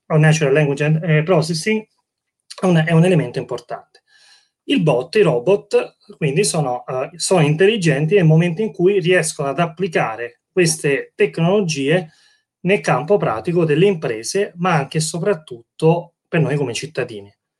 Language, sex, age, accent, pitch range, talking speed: Italian, male, 30-49, native, 145-195 Hz, 130 wpm